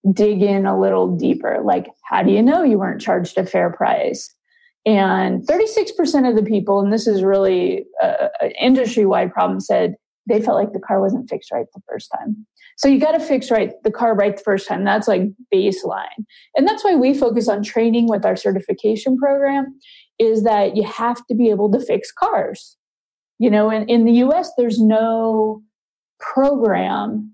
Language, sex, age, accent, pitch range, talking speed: English, female, 20-39, American, 200-250 Hz, 185 wpm